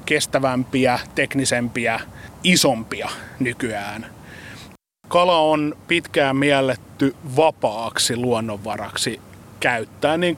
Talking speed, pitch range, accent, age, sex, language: 70 wpm, 125-150 Hz, native, 30-49, male, Finnish